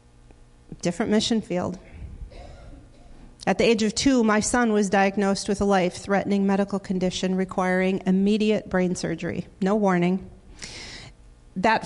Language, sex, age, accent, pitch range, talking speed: English, female, 40-59, American, 180-210 Hz, 120 wpm